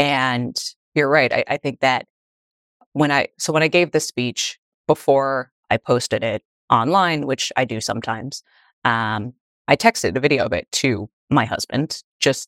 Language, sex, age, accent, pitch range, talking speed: English, female, 20-39, American, 125-150 Hz, 170 wpm